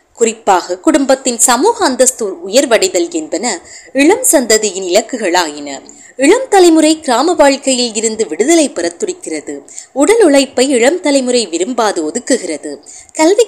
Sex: female